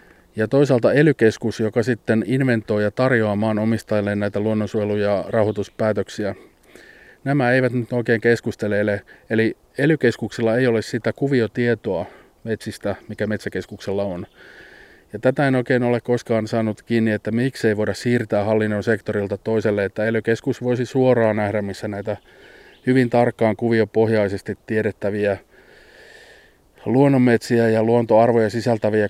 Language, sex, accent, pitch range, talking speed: Finnish, male, native, 105-125 Hz, 120 wpm